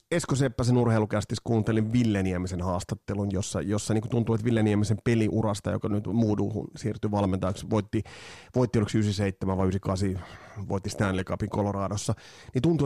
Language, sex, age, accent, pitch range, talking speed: Finnish, male, 30-49, native, 100-130 Hz, 135 wpm